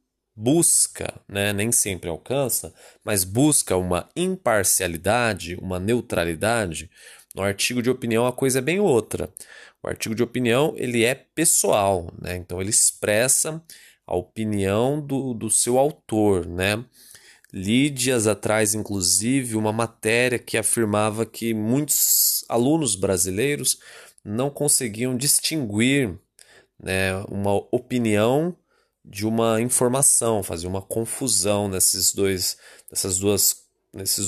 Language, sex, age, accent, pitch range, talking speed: Portuguese, male, 20-39, Brazilian, 95-130 Hz, 115 wpm